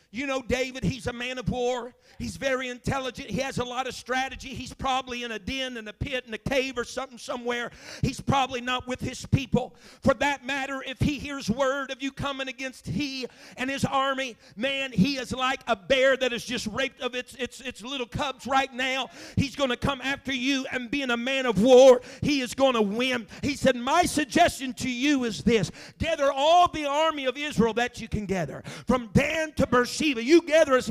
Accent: American